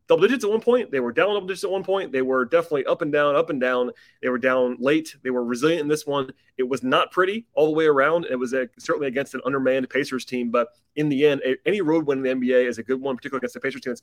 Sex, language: male, English